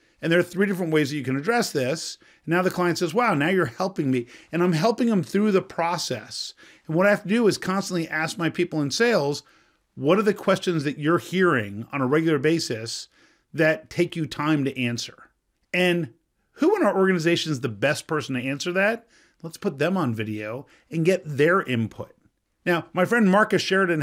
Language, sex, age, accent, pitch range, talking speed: English, male, 40-59, American, 135-180 Hz, 205 wpm